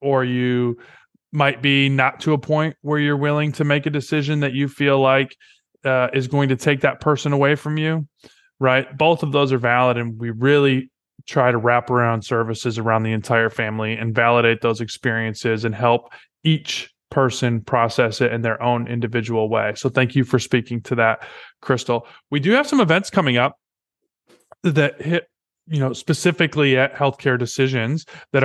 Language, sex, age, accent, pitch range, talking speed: English, male, 20-39, American, 120-150 Hz, 180 wpm